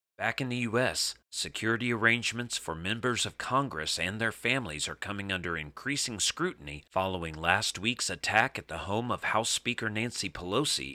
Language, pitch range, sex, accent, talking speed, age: English, 85-115 Hz, male, American, 165 wpm, 40-59